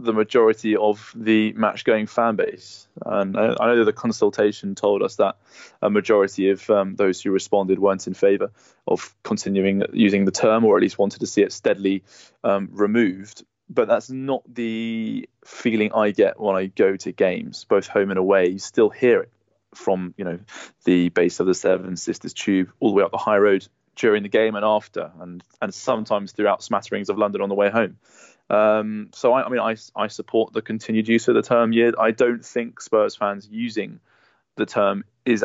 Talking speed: 200 wpm